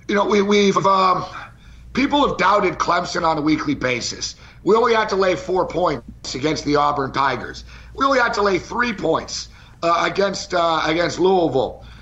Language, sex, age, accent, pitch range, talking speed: English, male, 50-69, American, 165-210 Hz, 180 wpm